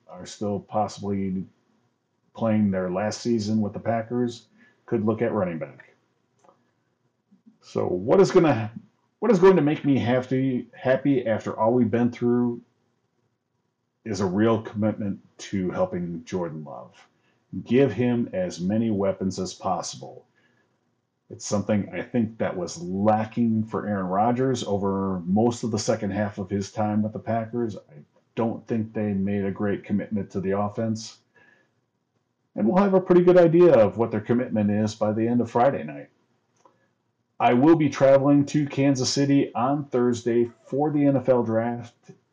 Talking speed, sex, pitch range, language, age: 160 wpm, male, 105-130 Hz, English, 40-59